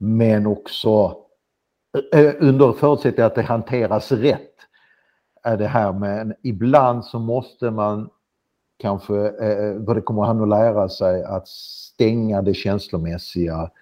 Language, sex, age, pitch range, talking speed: Swedish, male, 50-69, 95-115 Hz, 120 wpm